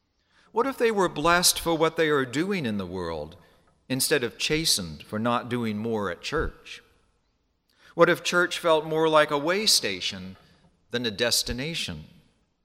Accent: American